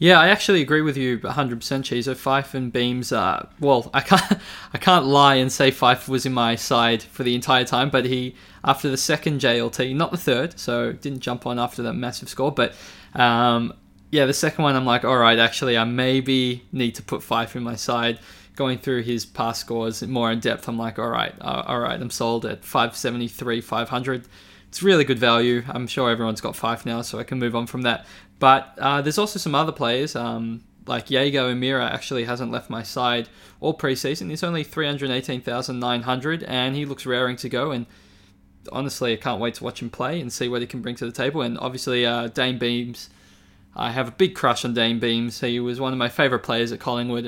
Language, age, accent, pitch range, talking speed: English, 20-39, Australian, 120-135 Hz, 215 wpm